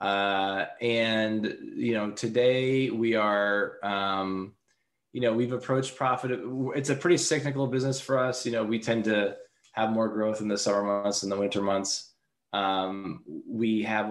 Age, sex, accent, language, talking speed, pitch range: 20-39, male, American, English, 165 wpm, 100-120 Hz